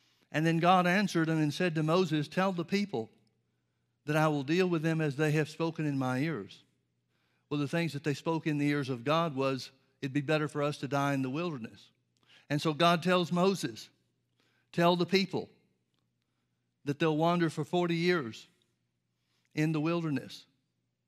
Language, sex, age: English, male, 60-79